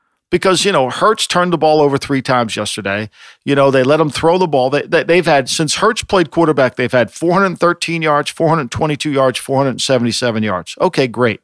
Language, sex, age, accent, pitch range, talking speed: English, male, 50-69, American, 130-170 Hz, 195 wpm